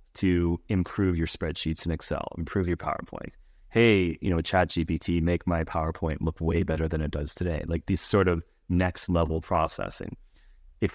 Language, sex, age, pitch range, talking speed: English, male, 30-49, 85-100 Hz, 175 wpm